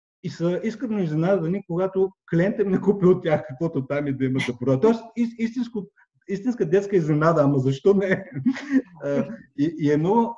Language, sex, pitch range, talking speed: Bulgarian, male, 120-165 Hz, 195 wpm